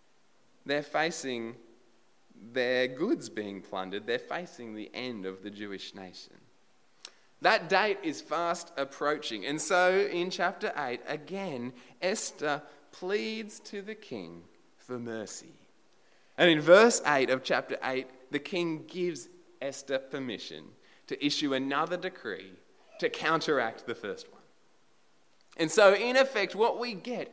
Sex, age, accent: male, 20-39, Australian